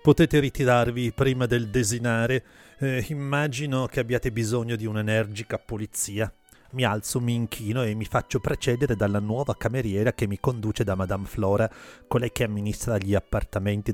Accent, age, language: native, 30-49, Italian